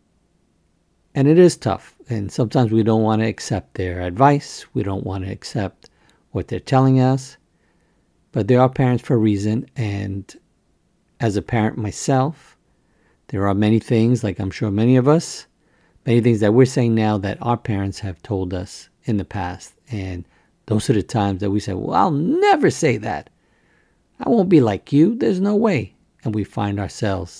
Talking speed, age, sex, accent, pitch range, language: 180 wpm, 50-69, male, American, 95-130 Hz, English